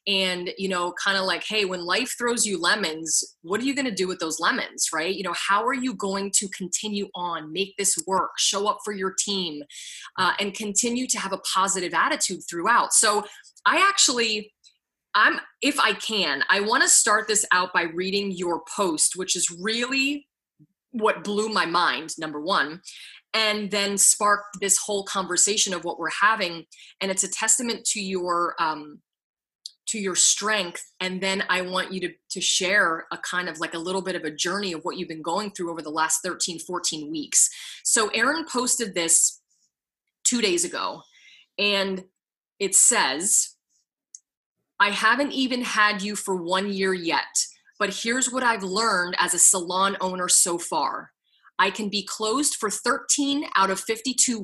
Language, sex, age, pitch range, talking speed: English, female, 20-39, 180-220 Hz, 180 wpm